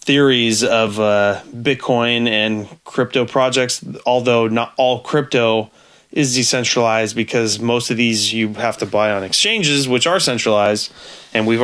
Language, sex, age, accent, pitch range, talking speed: English, male, 20-39, American, 105-125 Hz, 145 wpm